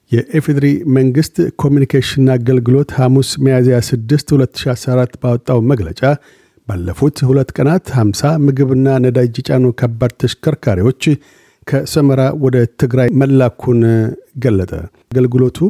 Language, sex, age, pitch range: Amharic, male, 50-69, 125-140 Hz